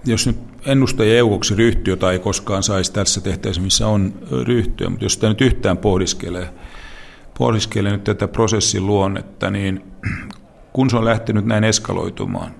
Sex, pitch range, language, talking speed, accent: male, 90-110 Hz, Finnish, 155 wpm, native